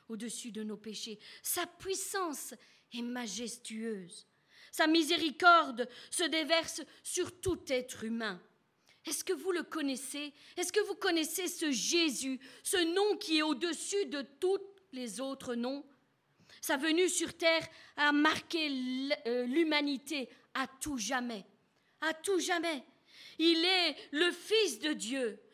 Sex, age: female, 40-59